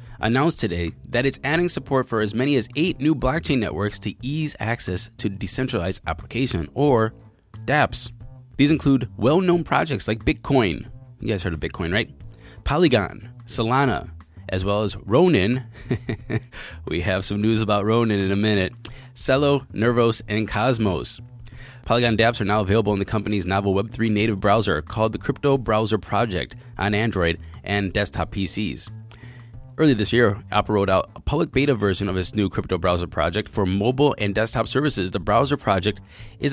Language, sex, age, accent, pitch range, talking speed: English, male, 20-39, American, 95-120 Hz, 165 wpm